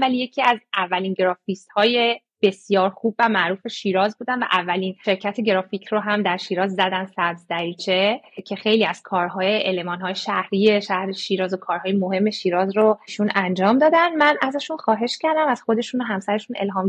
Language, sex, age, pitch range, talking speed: Persian, female, 30-49, 190-240 Hz, 165 wpm